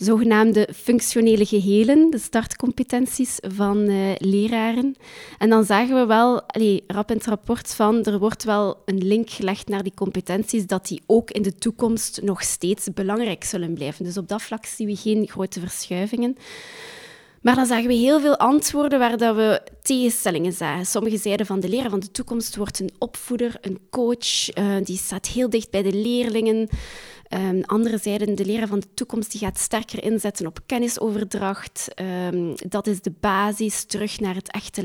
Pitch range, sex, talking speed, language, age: 195-235 Hz, female, 180 wpm, Dutch, 20-39